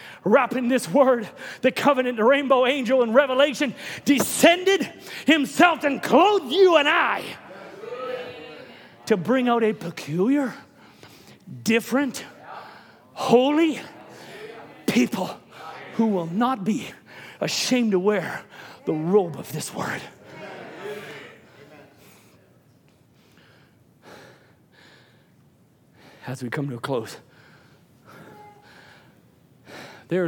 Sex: male